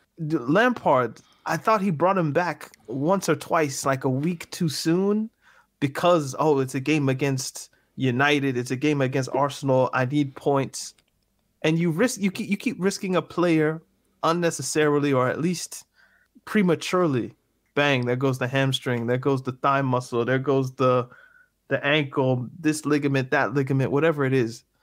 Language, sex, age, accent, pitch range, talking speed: English, male, 20-39, American, 130-165 Hz, 160 wpm